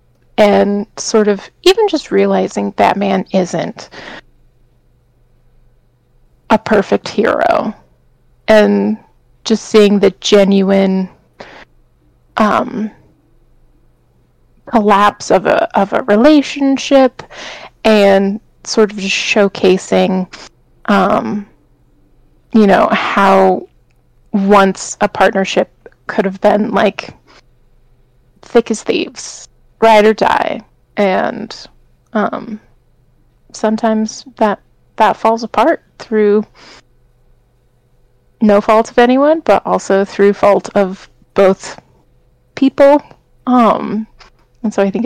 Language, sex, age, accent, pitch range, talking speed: English, female, 20-39, American, 175-220 Hz, 95 wpm